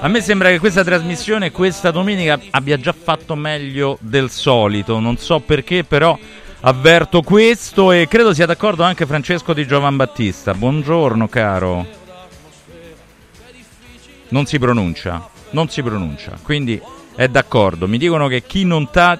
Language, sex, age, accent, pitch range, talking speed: Italian, male, 40-59, native, 120-170 Hz, 145 wpm